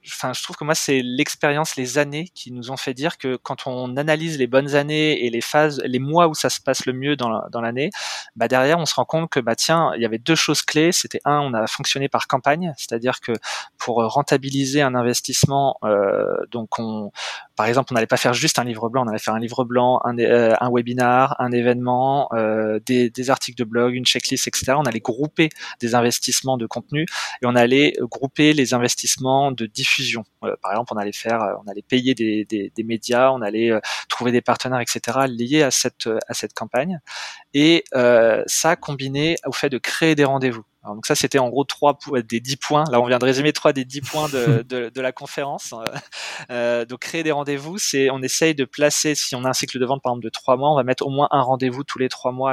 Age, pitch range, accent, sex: 20-39, 120-145 Hz, French, male